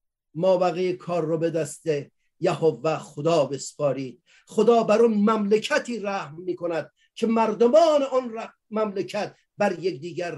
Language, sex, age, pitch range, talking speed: Persian, male, 50-69, 185-280 Hz, 125 wpm